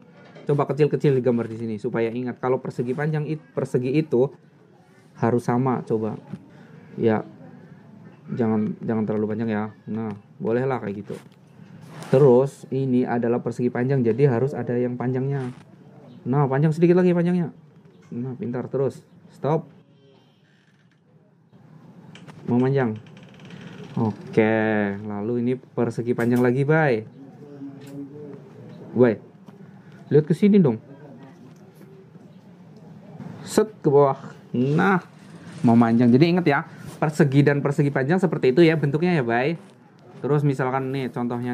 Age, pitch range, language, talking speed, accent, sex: 20-39, 125-175 Hz, Indonesian, 120 wpm, native, male